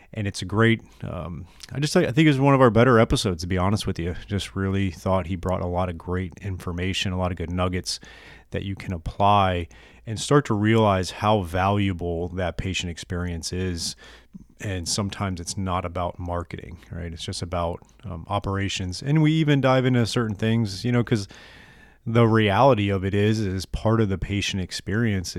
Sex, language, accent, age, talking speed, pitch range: male, English, American, 30-49, 195 wpm, 90-110 Hz